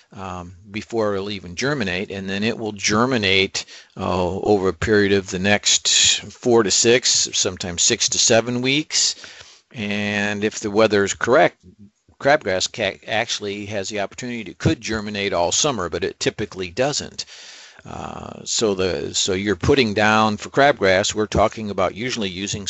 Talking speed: 160 wpm